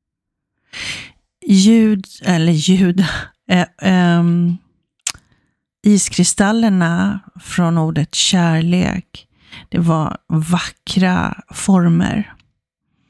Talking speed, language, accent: 60 wpm, Swedish, native